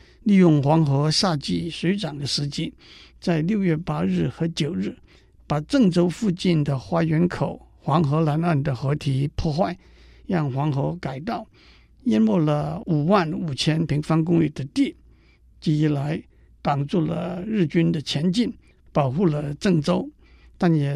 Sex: male